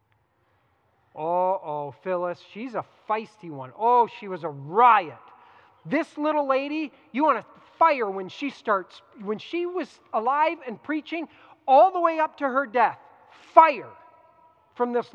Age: 40-59